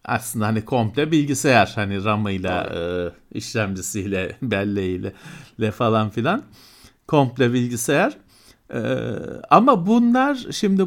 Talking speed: 100 wpm